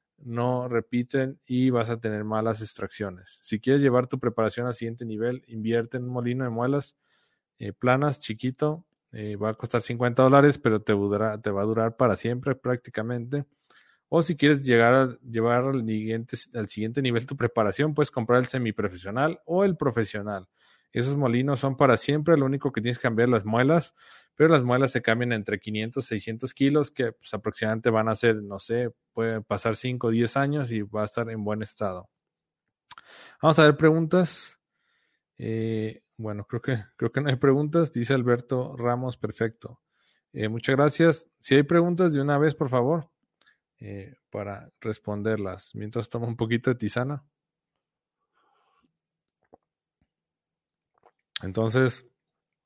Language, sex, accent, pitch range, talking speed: Spanish, male, Mexican, 110-140 Hz, 160 wpm